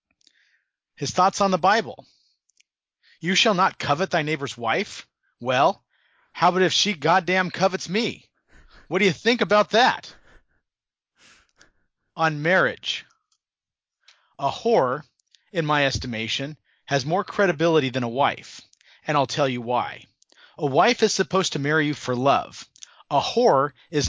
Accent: American